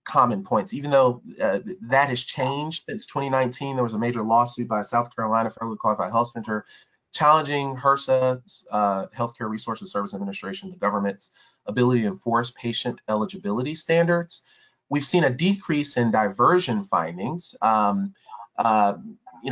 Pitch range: 110-155 Hz